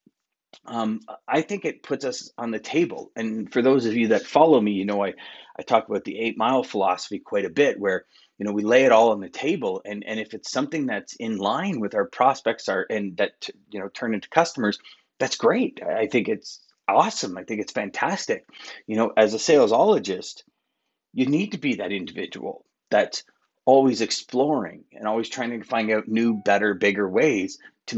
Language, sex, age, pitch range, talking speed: English, male, 30-49, 110-140 Hz, 200 wpm